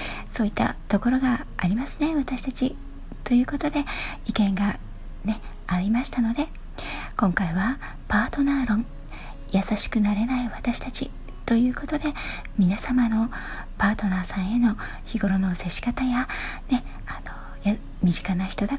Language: Japanese